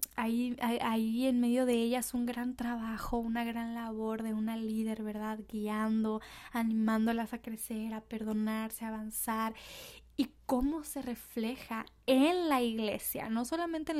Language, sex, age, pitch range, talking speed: Spanish, female, 10-29, 220-250 Hz, 150 wpm